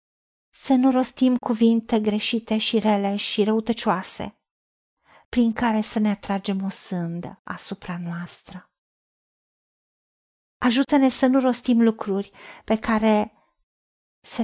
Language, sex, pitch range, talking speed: Romanian, female, 215-275 Hz, 110 wpm